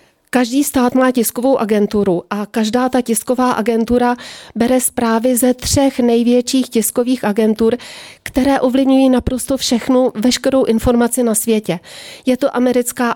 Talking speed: 130 wpm